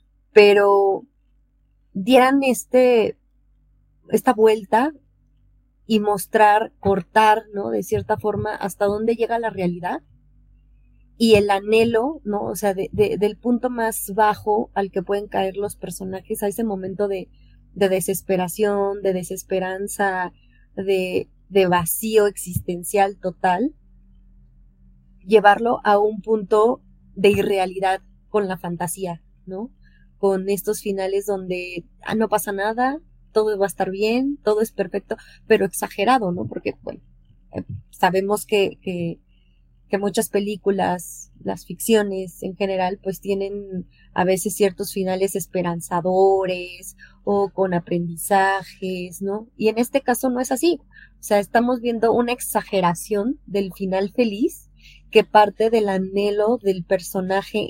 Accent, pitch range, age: Mexican, 190-215 Hz, 30-49